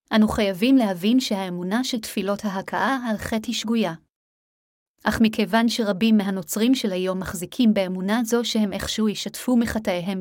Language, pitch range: Hebrew, 195-230 Hz